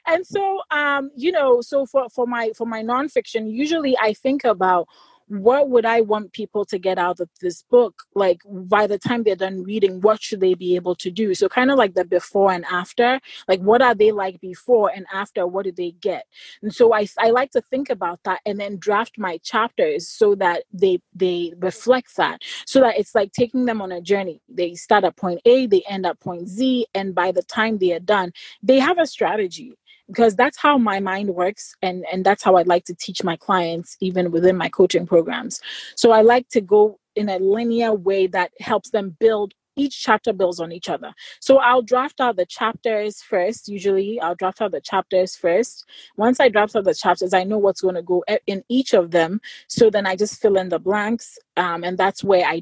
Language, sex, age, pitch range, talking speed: English, female, 30-49, 185-235 Hz, 220 wpm